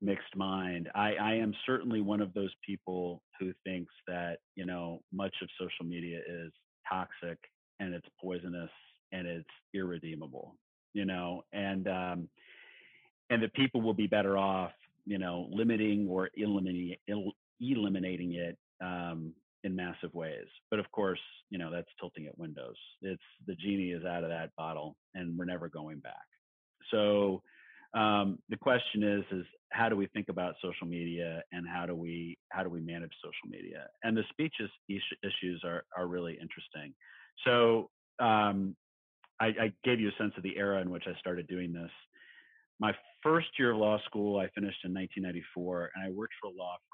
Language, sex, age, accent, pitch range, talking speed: English, male, 40-59, American, 85-100 Hz, 165 wpm